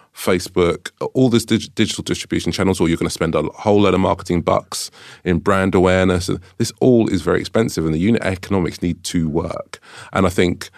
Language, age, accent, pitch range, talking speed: English, 30-49, British, 85-100 Hz, 200 wpm